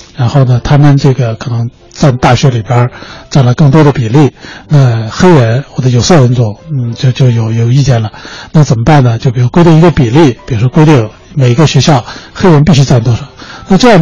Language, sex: Chinese, male